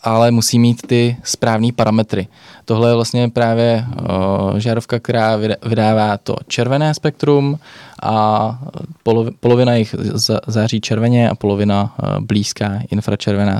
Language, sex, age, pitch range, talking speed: Czech, male, 20-39, 105-120 Hz, 110 wpm